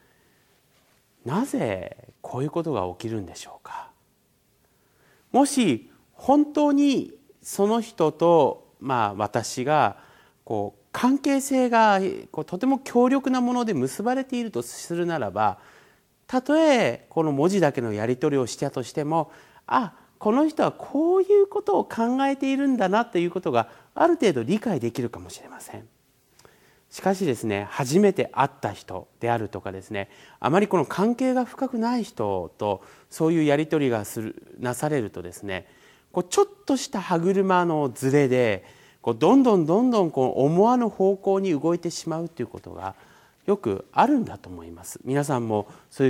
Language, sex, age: Japanese, male, 40-59